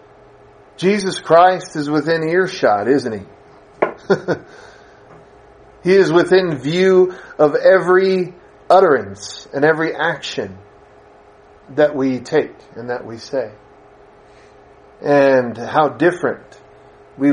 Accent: American